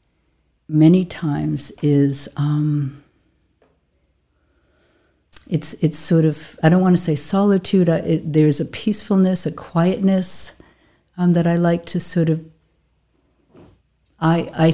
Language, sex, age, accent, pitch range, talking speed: English, female, 60-79, American, 135-170 Hz, 120 wpm